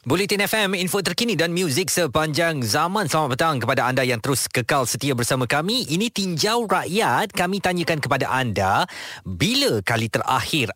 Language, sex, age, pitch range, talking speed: Malay, male, 20-39, 125-170 Hz, 155 wpm